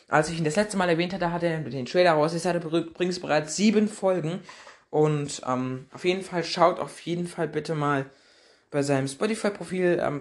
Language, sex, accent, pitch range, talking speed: German, male, German, 130-170 Hz, 200 wpm